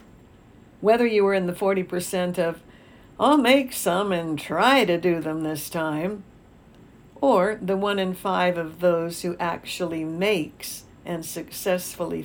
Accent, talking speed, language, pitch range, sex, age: American, 145 wpm, English, 170-215 Hz, female, 60-79